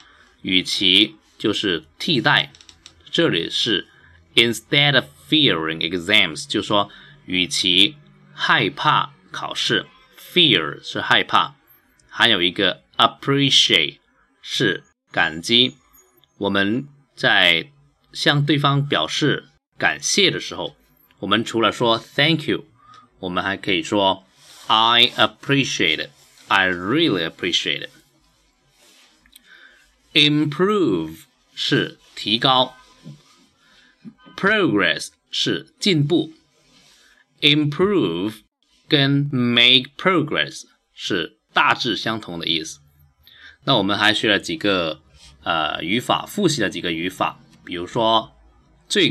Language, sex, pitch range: Chinese, male, 95-145 Hz